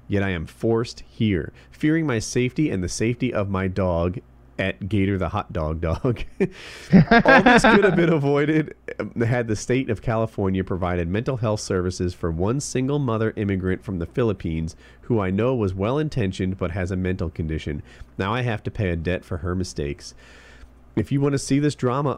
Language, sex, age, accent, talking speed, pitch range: English, male, 40-59, American, 190 wpm, 85-115 Hz